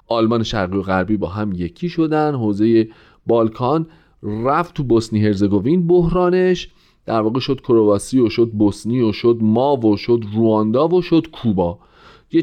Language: Persian